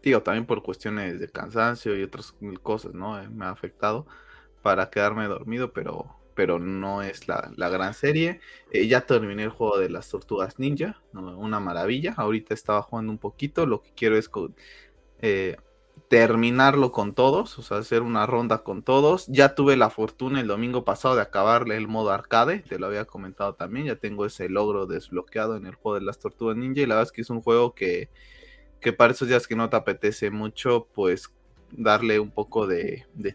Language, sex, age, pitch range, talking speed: Spanish, male, 20-39, 100-120 Hz, 195 wpm